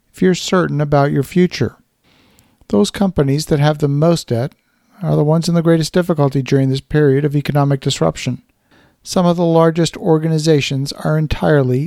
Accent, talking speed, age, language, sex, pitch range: American, 160 wpm, 50-69, English, male, 140-165 Hz